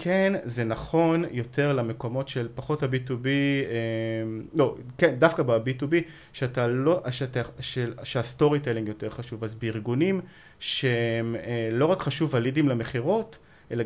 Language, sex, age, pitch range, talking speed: Hebrew, male, 20-39, 115-135 Hz, 125 wpm